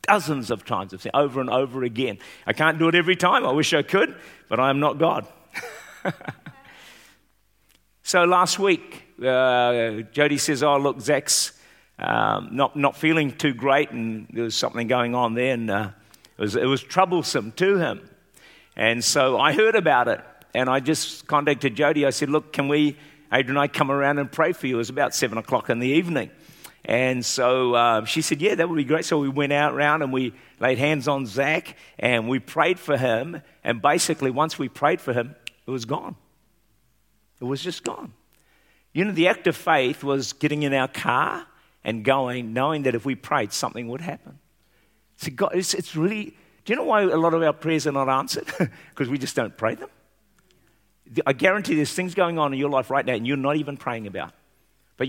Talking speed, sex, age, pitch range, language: 205 wpm, male, 50-69, 125-155 Hz, English